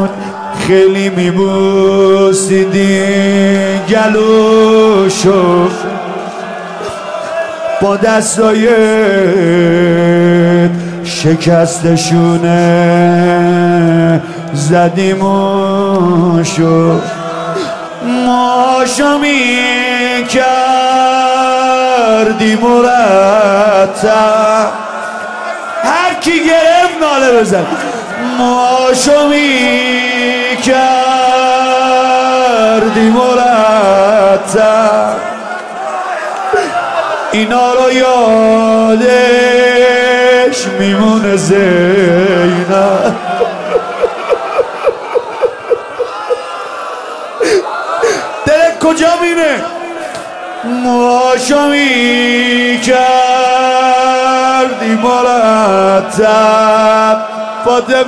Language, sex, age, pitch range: Persian, male, 40-59, 195-255 Hz